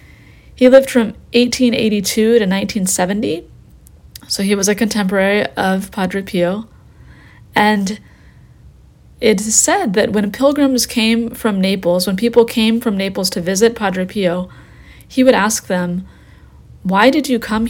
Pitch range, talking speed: 180-225 Hz, 140 wpm